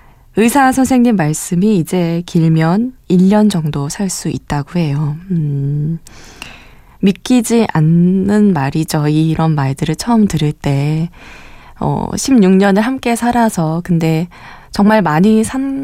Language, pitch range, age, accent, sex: Korean, 165-235 Hz, 20-39, native, female